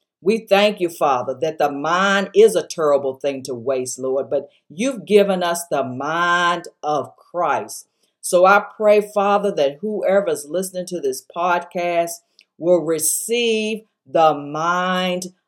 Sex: female